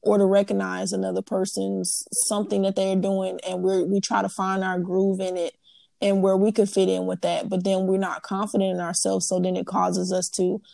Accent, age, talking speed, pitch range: American, 20-39, 225 wpm, 185-210 Hz